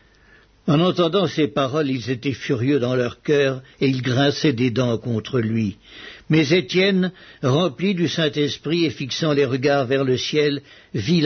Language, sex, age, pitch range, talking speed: English, male, 60-79, 130-160 Hz, 160 wpm